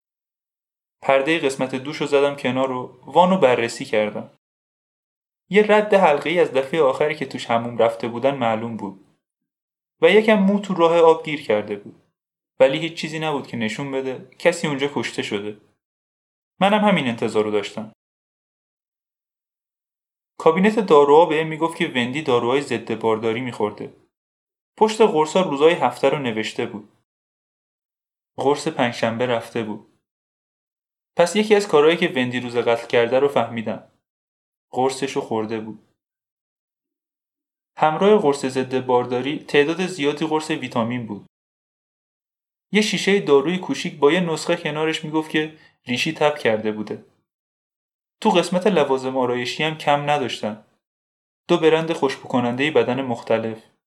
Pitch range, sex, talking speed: 120-170 Hz, male, 135 wpm